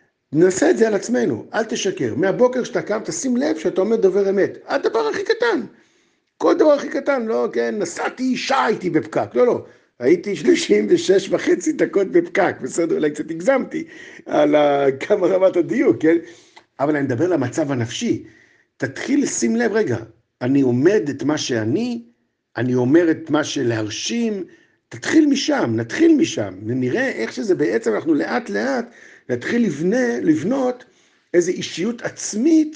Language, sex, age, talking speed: Hebrew, male, 50-69, 145 wpm